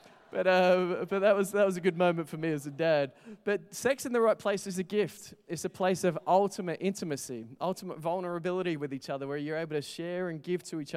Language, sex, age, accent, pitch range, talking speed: English, male, 20-39, Australian, 135-170 Hz, 240 wpm